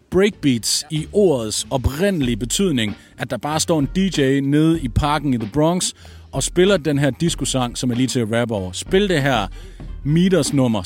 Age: 40-59